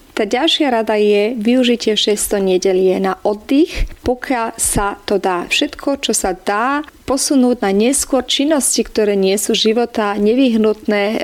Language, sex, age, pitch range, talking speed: Slovak, female, 30-49, 205-240 Hz, 140 wpm